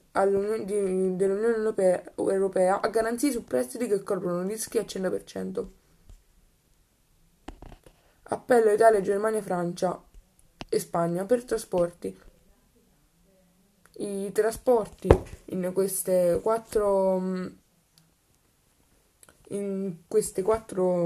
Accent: native